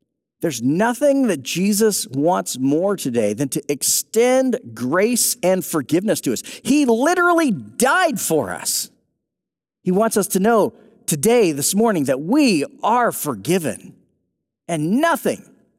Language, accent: English, American